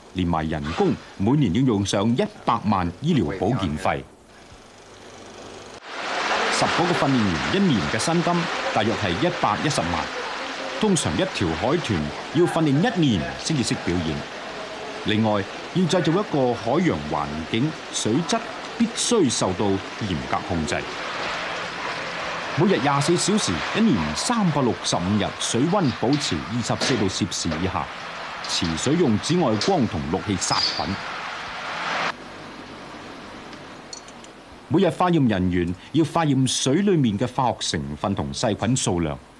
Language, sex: Chinese, male